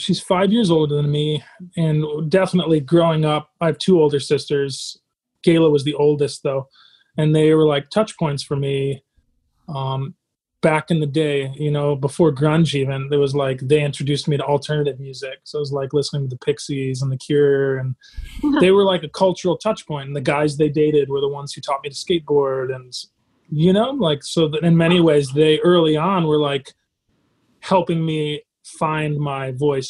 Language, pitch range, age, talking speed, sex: English, 140-160 Hz, 30-49, 195 wpm, male